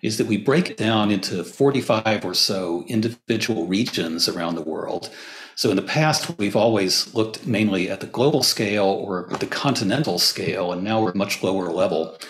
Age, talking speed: 40-59, 185 wpm